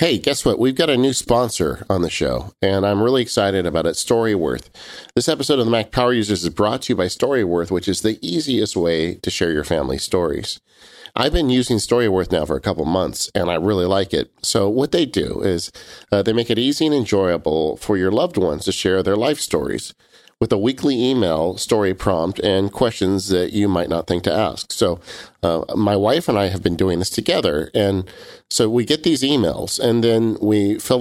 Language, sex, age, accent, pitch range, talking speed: English, male, 50-69, American, 90-115 Hz, 215 wpm